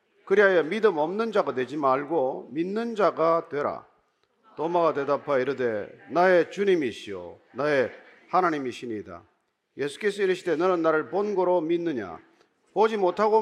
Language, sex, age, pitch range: Korean, male, 40-59, 120-195 Hz